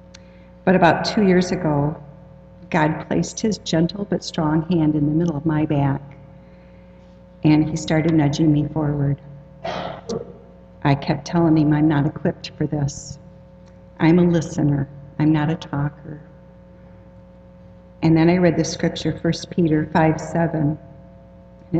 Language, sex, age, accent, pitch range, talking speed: English, female, 50-69, American, 140-175 Hz, 135 wpm